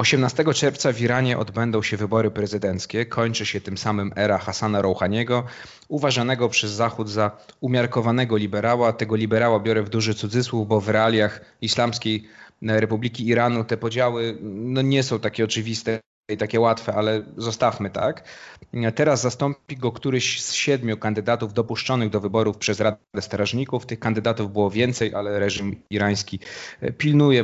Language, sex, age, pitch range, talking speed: Polish, male, 30-49, 110-125 Hz, 145 wpm